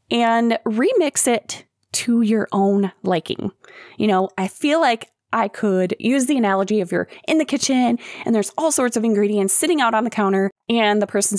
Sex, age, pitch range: female, 20-39, 200-270 Hz